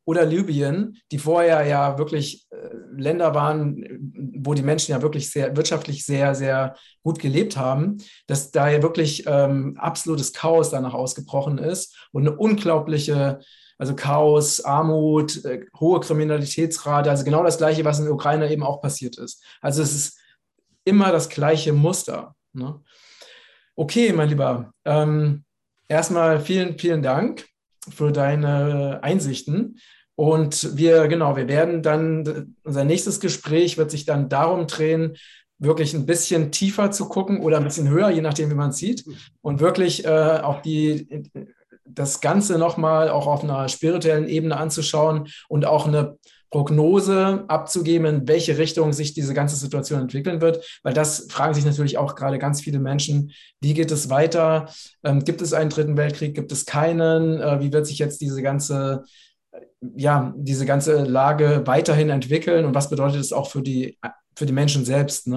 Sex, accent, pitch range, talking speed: male, German, 145-160 Hz, 160 wpm